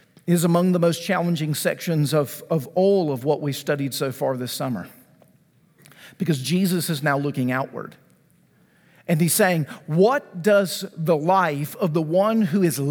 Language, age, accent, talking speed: English, 50-69, American, 165 wpm